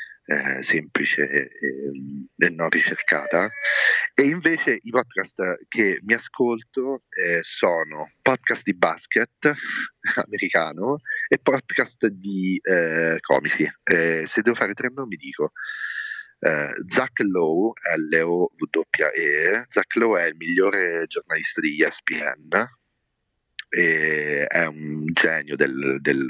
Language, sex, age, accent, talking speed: Italian, male, 30-49, native, 115 wpm